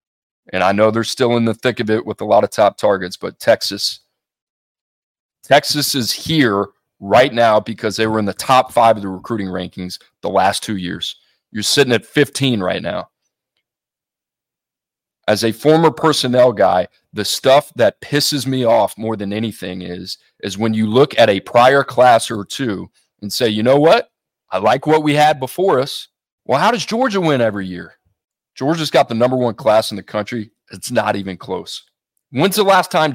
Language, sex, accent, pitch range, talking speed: English, male, American, 110-155 Hz, 190 wpm